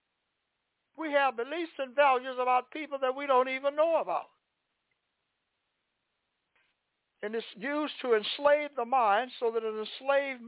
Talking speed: 135 wpm